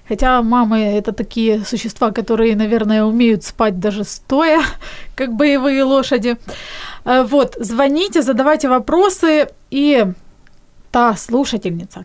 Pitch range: 220-290 Hz